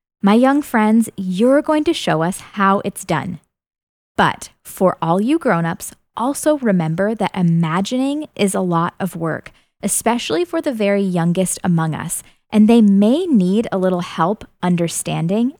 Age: 20-39